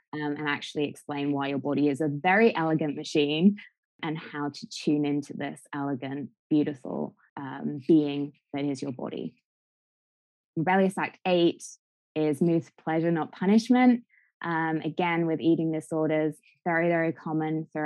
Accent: British